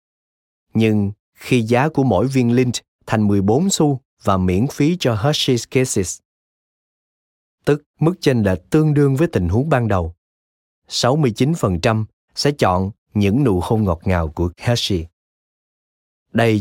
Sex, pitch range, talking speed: male, 90-130 Hz, 135 wpm